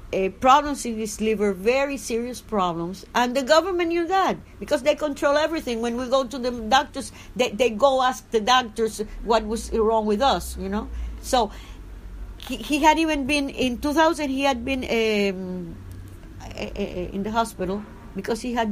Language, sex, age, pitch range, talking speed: English, female, 60-79, 205-275 Hz, 175 wpm